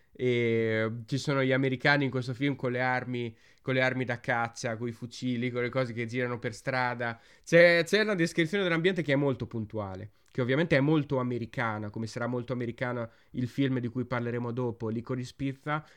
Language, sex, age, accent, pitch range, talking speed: Italian, male, 20-39, native, 120-150 Hz, 195 wpm